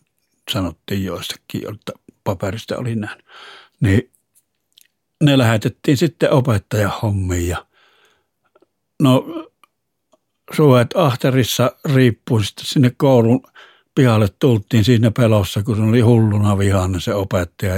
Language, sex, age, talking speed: Finnish, male, 60-79, 95 wpm